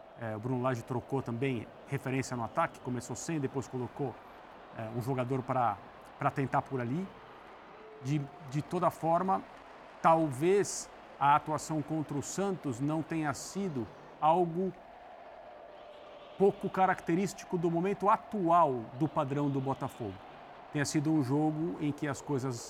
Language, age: Portuguese, 50-69